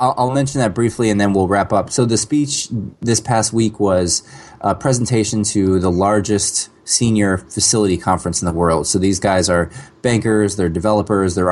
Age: 20-39